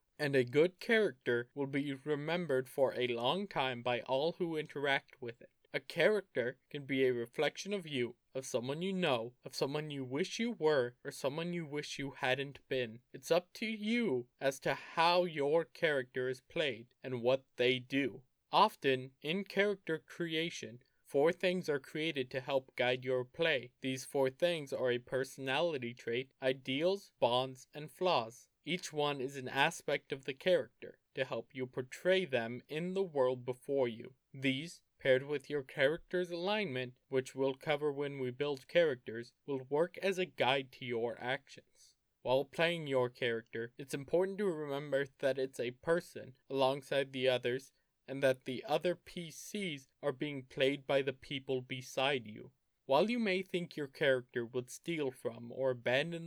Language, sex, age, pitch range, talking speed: English, male, 20-39, 130-165 Hz, 170 wpm